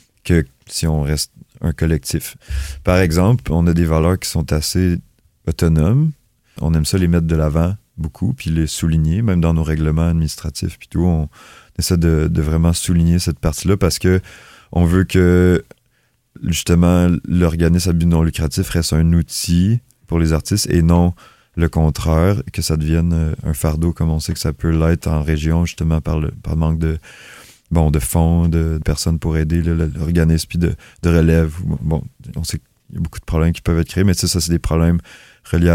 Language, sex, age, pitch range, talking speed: French, male, 30-49, 80-90 Hz, 190 wpm